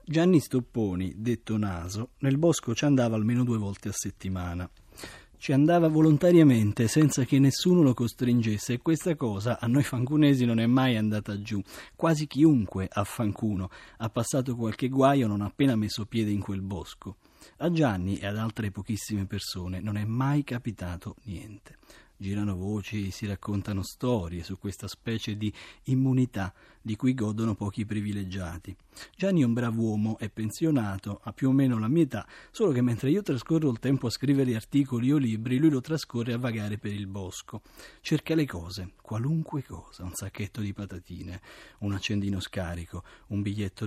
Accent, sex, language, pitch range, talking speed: native, male, Italian, 100-130 Hz, 165 wpm